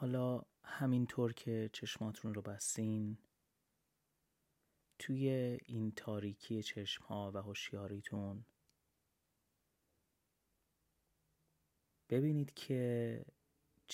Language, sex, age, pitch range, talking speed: Persian, male, 30-49, 100-115 Hz, 60 wpm